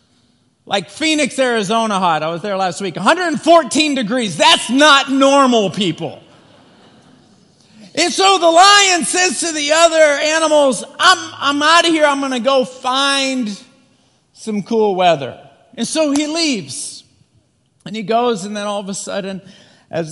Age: 40-59